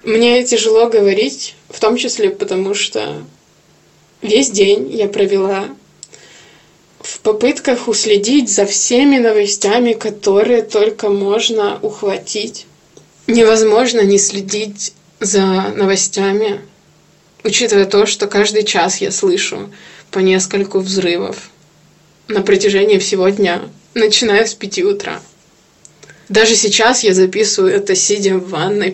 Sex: female